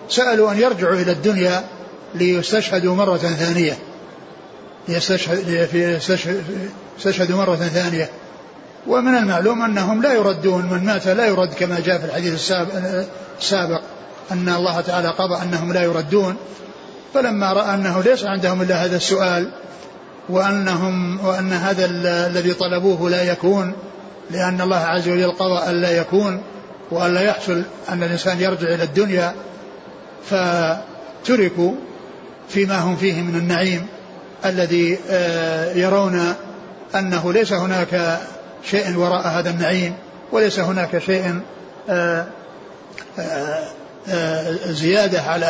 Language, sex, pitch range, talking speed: Arabic, male, 175-195 Hz, 110 wpm